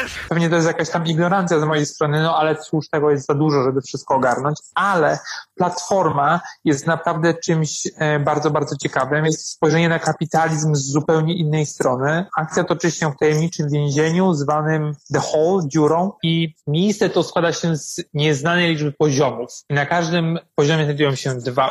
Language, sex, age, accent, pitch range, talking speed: Polish, male, 30-49, native, 145-170 Hz, 165 wpm